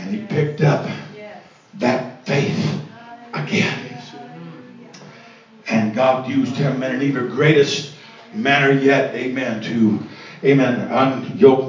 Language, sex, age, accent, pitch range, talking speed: English, male, 50-69, American, 115-140 Hz, 110 wpm